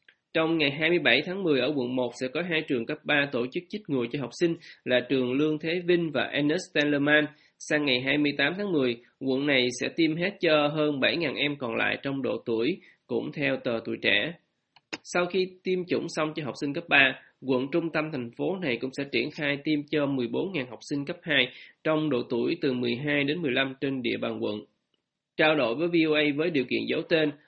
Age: 20-39